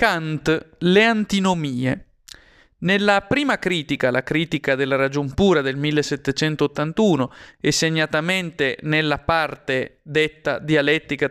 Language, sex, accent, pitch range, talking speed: Italian, male, native, 145-205 Hz, 100 wpm